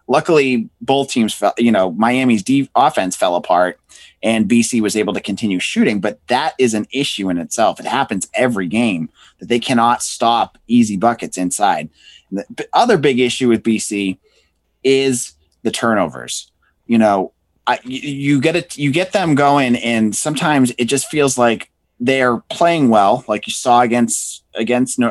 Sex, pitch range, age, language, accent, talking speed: male, 110-130 Hz, 30-49, English, American, 165 wpm